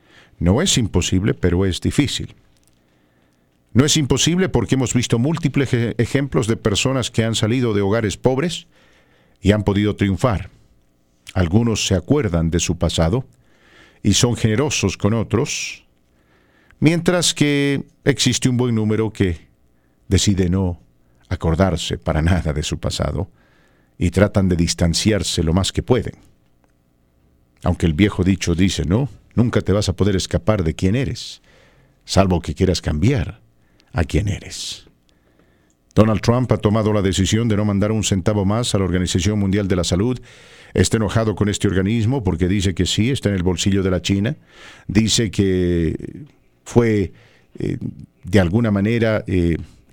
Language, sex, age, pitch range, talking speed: English, male, 50-69, 85-115 Hz, 150 wpm